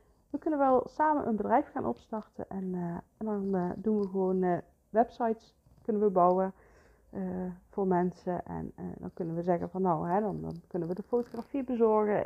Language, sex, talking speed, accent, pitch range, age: Dutch, female, 195 wpm, Dutch, 180-220 Hz, 40-59